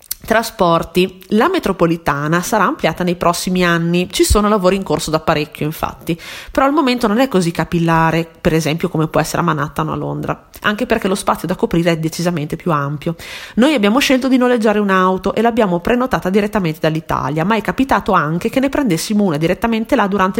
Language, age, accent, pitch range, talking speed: Italian, 30-49, native, 165-205 Hz, 190 wpm